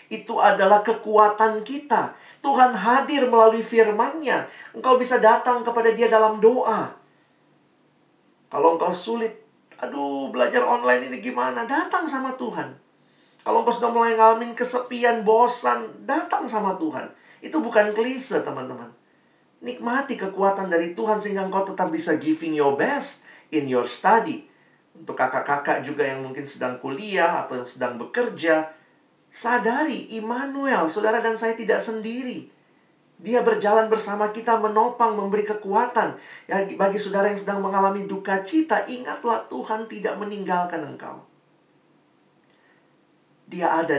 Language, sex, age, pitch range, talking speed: Indonesian, male, 40-59, 155-235 Hz, 130 wpm